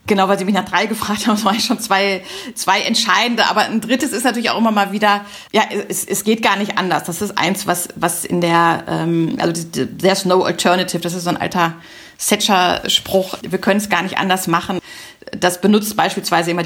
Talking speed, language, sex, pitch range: 215 wpm, German, female, 170-205 Hz